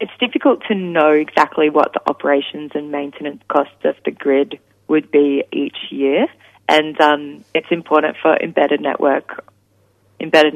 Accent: Australian